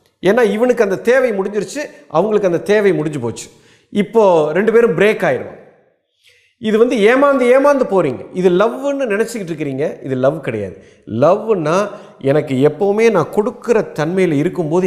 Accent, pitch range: native, 175-235 Hz